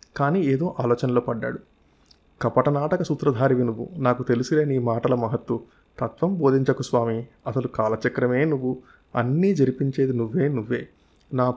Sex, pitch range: male, 120-140 Hz